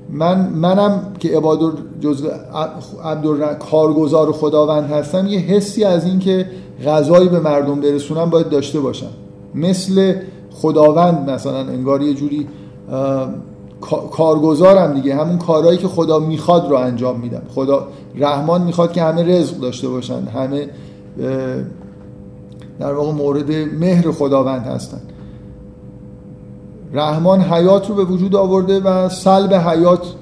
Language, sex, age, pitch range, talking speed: Persian, male, 50-69, 145-175 Hz, 120 wpm